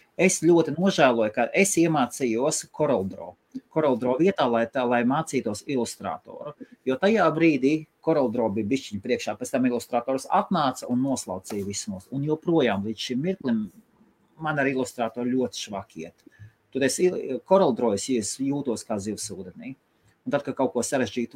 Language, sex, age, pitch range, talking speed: English, male, 30-49, 115-165 Hz, 135 wpm